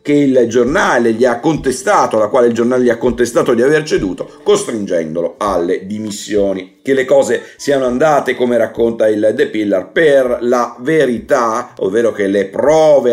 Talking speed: 165 wpm